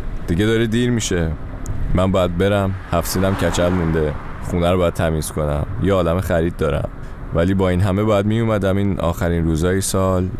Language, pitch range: Persian, 80-95 Hz